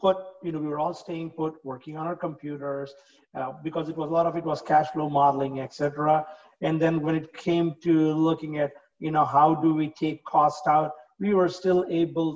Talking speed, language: 225 wpm, English